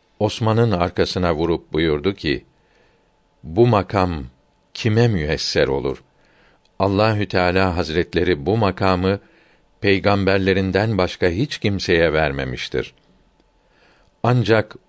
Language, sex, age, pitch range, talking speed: Turkish, male, 50-69, 90-110 Hz, 85 wpm